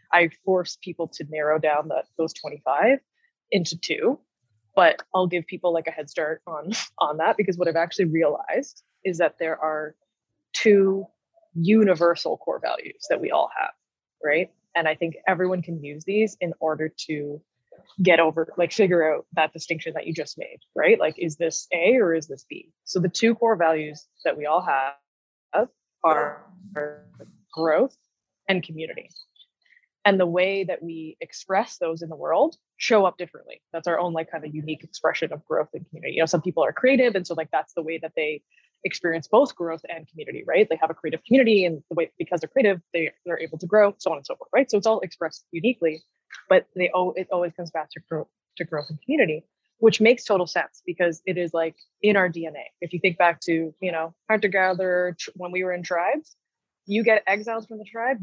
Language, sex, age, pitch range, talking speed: English, female, 20-39, 160-200 Hz, 205 wpm